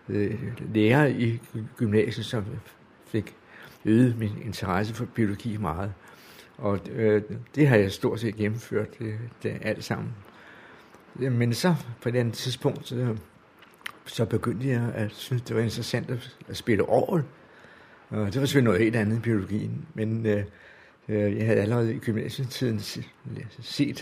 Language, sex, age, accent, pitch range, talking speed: Danish, male, 60-79, native, 105-125 Hz, 150 wpm